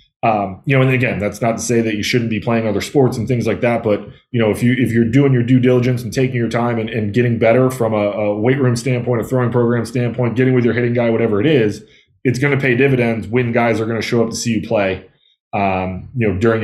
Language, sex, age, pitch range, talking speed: English, male, 20-39, 110-125 Hz, 280 wpm